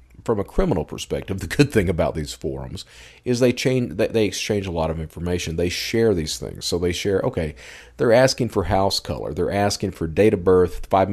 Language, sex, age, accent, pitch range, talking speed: English, male, 40-59, American, 85-105 Hz, 210 wpm